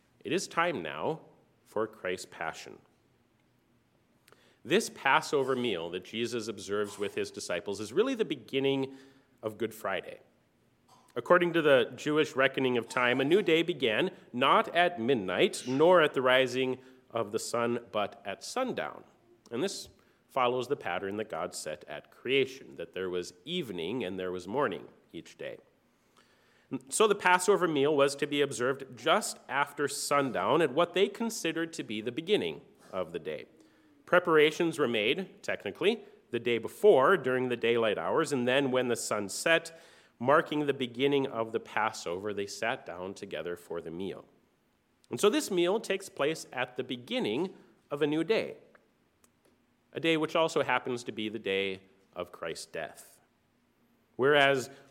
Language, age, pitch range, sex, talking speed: English, 40-59, 120-165 Hz, male, 160 wpm